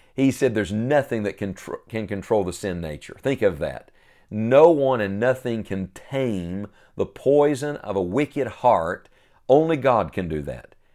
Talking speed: 165 wpm